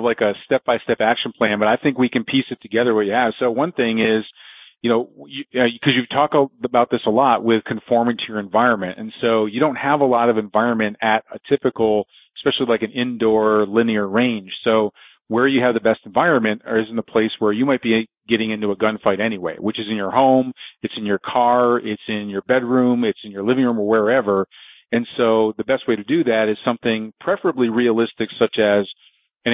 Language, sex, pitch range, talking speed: English, male, 110-125 Hz, 220 wpm